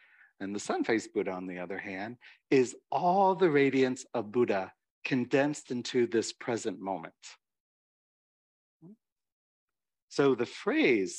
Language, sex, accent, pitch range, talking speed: English, male, American, 105-145 Hz, 125 wpm